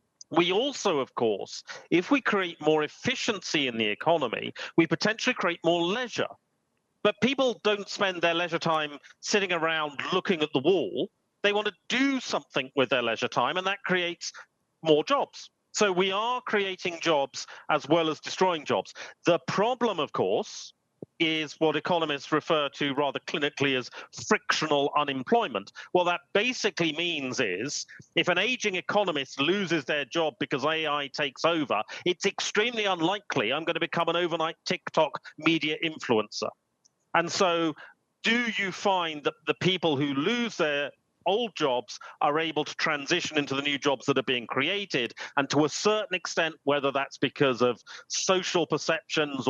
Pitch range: 150-200 Hz